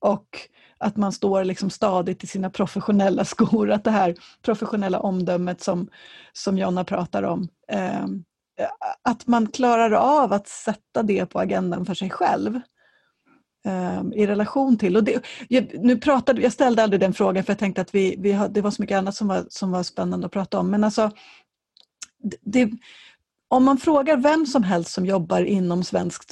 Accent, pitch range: native, 185-225 Hz